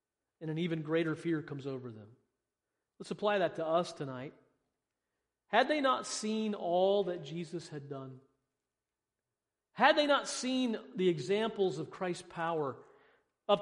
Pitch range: 155-230 Hz